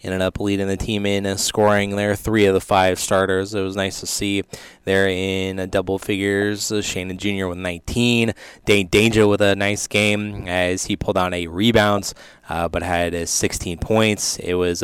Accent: American